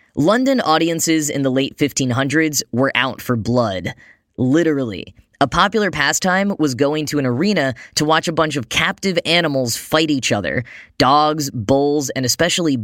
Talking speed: 155 wpm